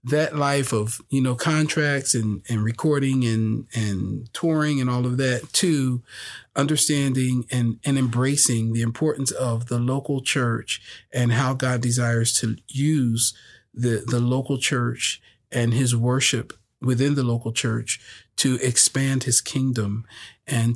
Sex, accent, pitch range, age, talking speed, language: male, American, 115-140 Hz, 40-59, 140 wpm, English